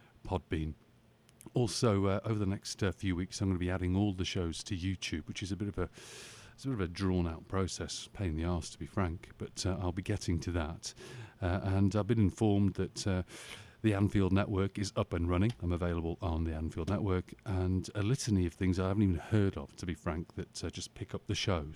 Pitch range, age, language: 90-110 Hz, 40-59, English